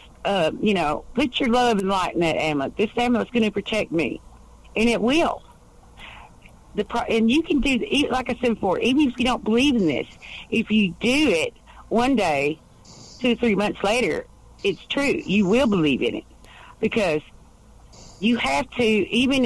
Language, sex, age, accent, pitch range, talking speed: English, female, 50-69, American, 180-235 Hz, 195 wpm